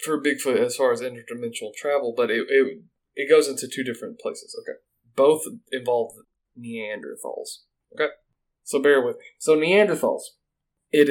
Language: English